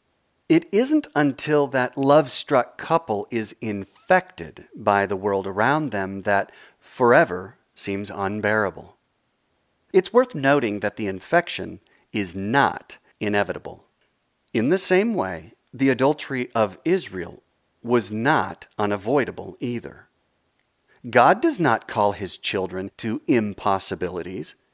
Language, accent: English, American